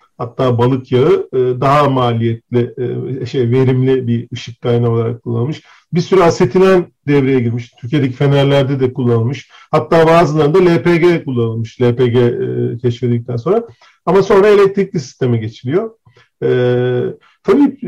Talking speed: 115 wpm